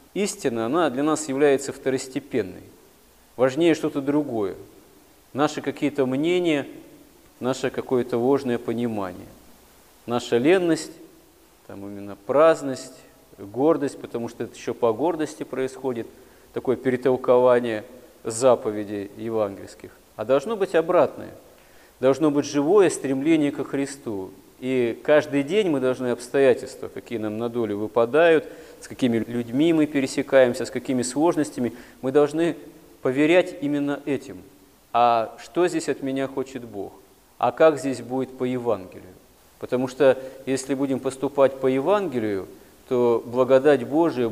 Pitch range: 120-145 Hz